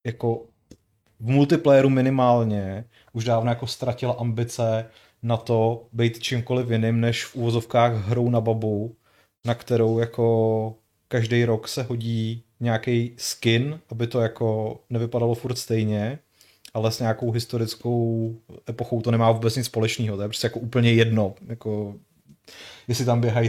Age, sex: 30-49, male